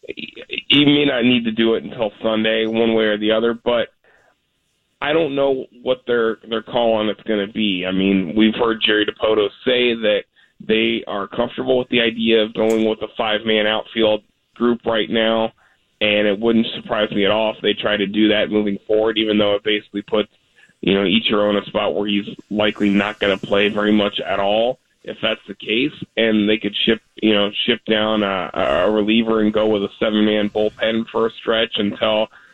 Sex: male